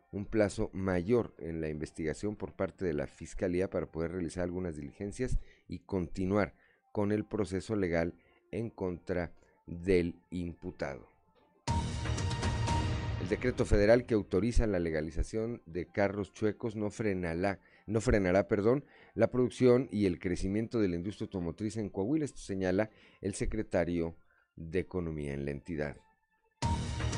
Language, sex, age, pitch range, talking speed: Spanish, male, 40-59, 85-105 Hz, 130 wpm